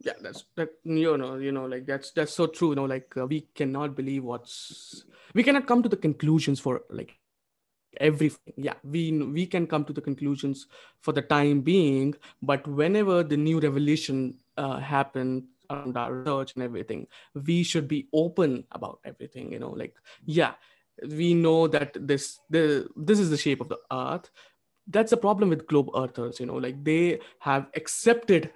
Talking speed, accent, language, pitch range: 185 wpm, Indian, English, 140-170 Hz